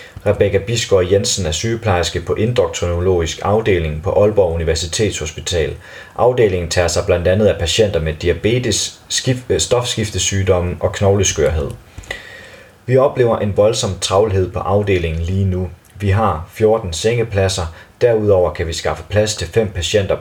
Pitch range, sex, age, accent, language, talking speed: 90-110 Hz, male, 30-49, native, Danish, 130 wpm